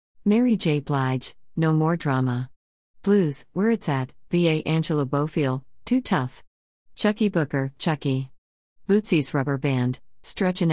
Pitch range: 125-175 Hz